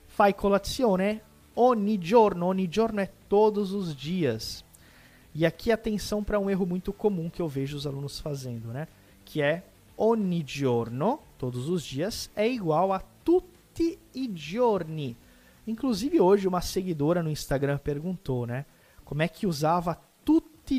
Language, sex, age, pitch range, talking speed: Portuguese, male, 20-39, 130-220 Hz, 145 wpm